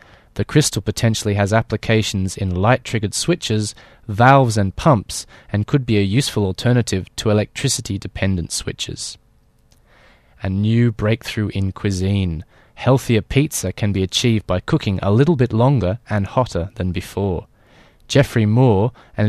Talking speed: 135 wpm